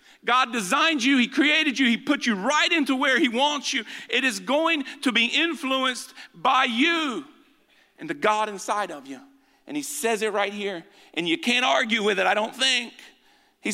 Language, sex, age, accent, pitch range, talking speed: English, male, 50-69, American, 220-285 Hz, 195 wpm